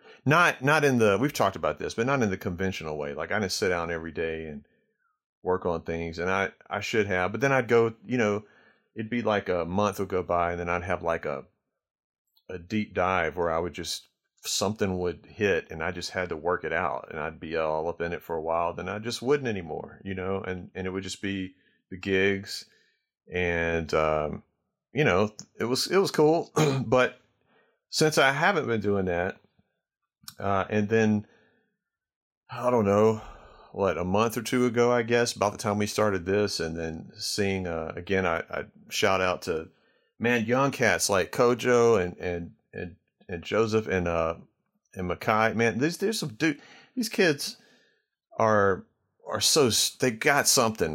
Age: 40-59